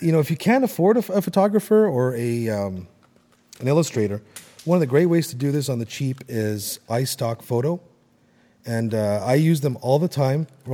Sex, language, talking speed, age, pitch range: male, English, 200 wpm, 30-49, 105-150 Hz